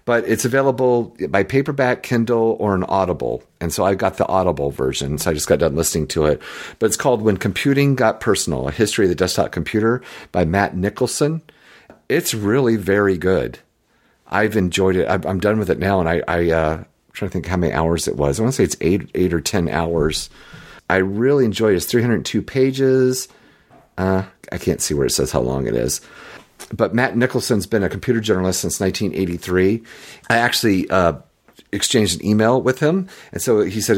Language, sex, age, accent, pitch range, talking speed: English, male, 50-69, American, 85-115 Hz, 205 wpm